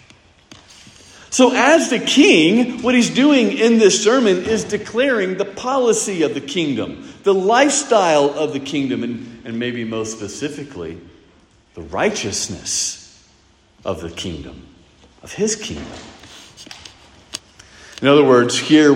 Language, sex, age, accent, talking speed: English, male, 40-59, American, 125 wpm